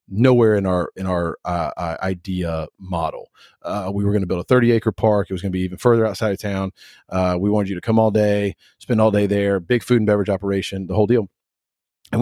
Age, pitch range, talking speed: 30-49, 90-110 Hz, 240 wpm